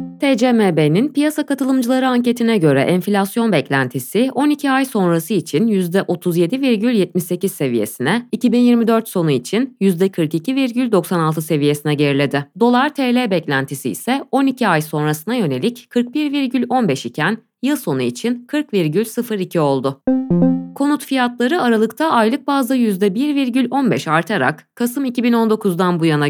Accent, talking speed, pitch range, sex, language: native, 100 wpm, 160-250 Hz, female, Turkish